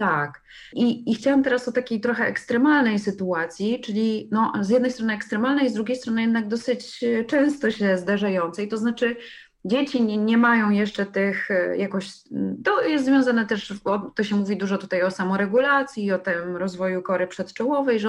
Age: 30-49